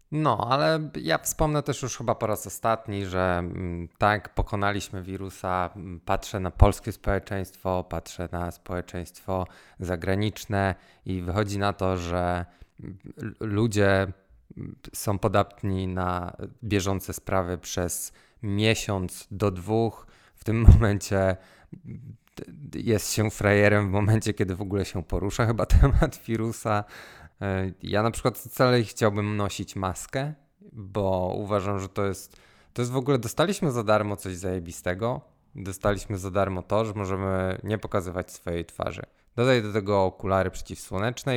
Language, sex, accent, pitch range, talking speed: Polish, male, native, 95-120 Hz, 130 wpm